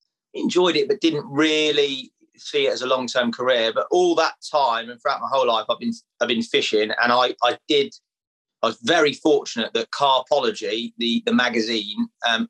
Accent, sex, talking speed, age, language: British, male, 185 wpm, 30-49, English